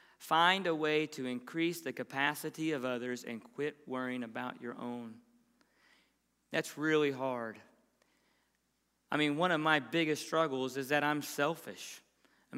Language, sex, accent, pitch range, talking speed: English, male, American, 145-190 Hz, 145 wpm